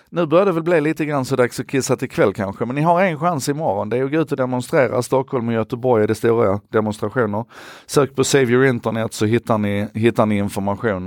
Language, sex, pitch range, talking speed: Swedish, male, 95-125 Hz, 240 wpm